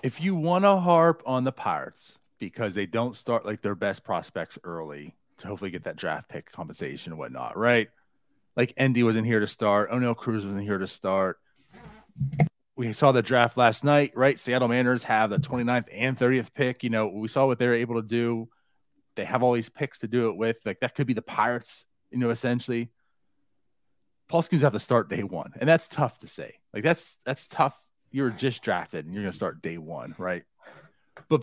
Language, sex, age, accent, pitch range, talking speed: English, male, 30-49, American, 115-165 Hz, 210 wpm